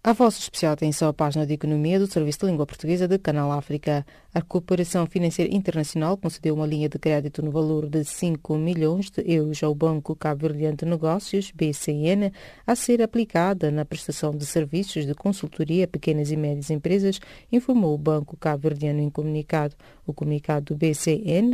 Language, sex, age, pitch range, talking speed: English, female, 30-49, 150-180 Hz, 180 wpm